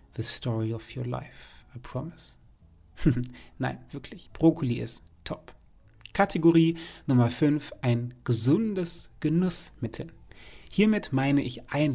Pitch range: 115-140 Hz